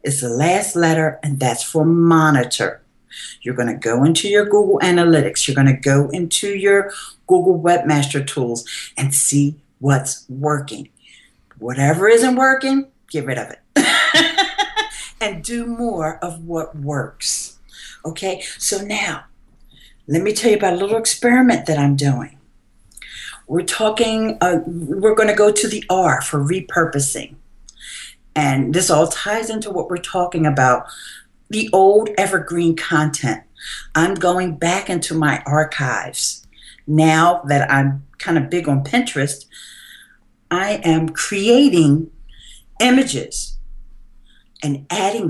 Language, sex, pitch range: English, female, 145-200 Hz